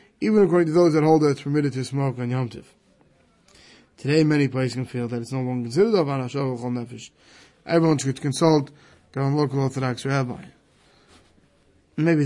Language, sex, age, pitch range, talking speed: English, male, 20-39, 135-175 Hz, 170 wpm